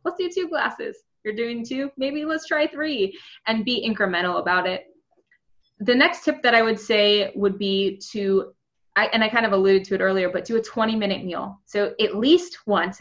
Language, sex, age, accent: English, female, 20-39, American